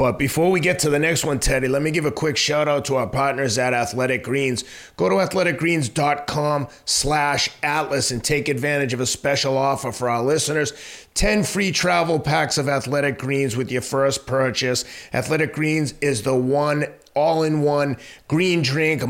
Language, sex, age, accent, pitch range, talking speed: English, male, 30-49, American, 125-150 Hz, 180 wpm